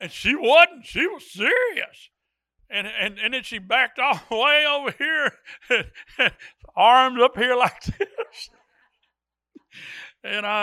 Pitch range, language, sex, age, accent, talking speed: 160-245 Hz, English, male, 60-79, American, 125 wpm